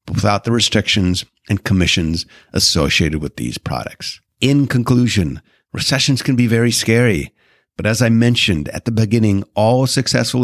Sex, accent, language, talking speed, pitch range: male, American, English, 145 wpm, 95-115 Hz